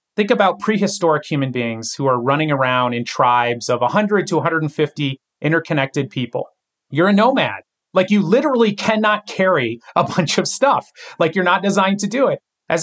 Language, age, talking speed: English, 30-49, 175 wpm